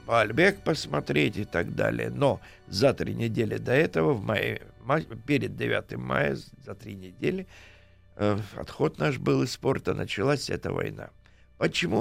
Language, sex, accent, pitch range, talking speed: Russian, male, native, 95-145 Hz, 140 wpm